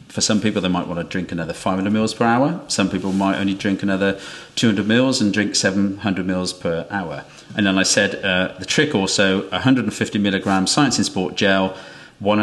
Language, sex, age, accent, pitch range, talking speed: English, male, 40-59, British, 95-105 Hz, 205 wpm